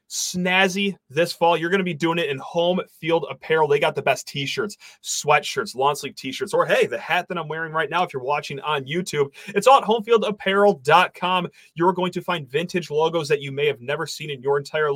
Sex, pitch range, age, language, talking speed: male, 145-200 Hz, 30-49, English, 220 wpm